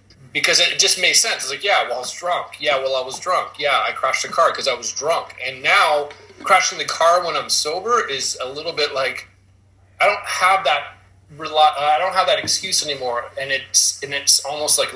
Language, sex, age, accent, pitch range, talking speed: English, male, 30-49, American, 110-160 Hz, 220 wpm